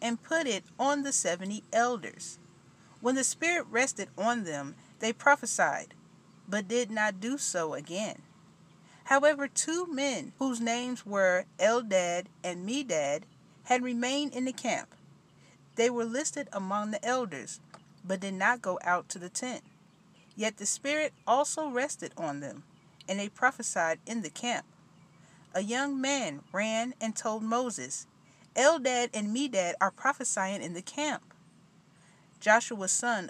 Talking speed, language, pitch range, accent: 140 wpm, English, 185-250 Hz, American